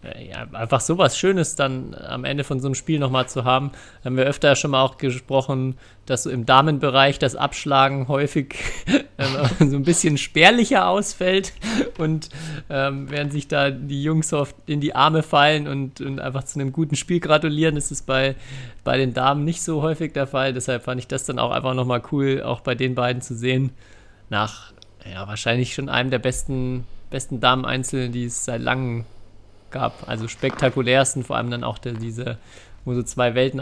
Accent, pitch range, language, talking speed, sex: German, 120-140 Hz, German, 190 wpm, male